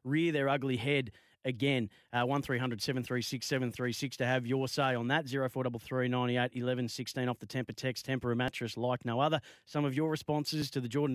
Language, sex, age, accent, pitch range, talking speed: English, male, 30-49, Australian, 125-145 Hz, 205 wpm